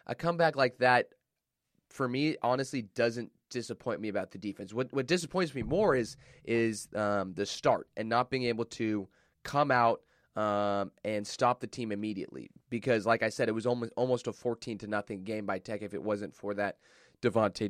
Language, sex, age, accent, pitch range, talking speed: English, male, 20-39, American, 105-125 Hz, 195 wpm